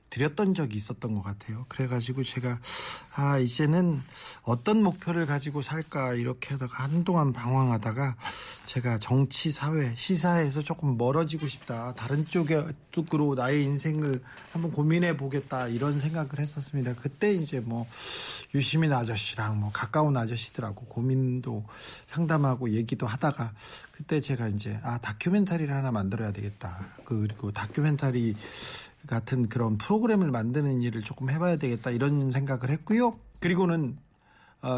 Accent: native